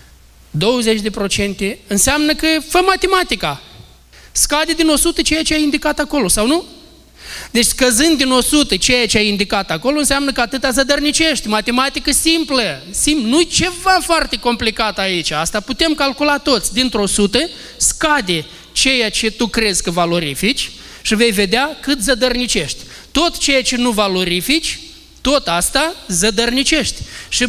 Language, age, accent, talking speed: Romanian, 20-39, native, 140 wpm